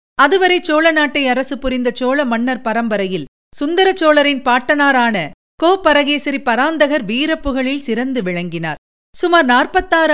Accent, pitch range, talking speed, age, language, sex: native, 230-315 Hz, 95 wpm, 50-69, Tamil, female